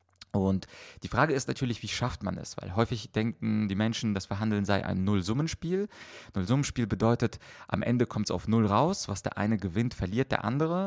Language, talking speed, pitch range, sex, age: German, 200 wpm, 100-120 Hz, male, 30-49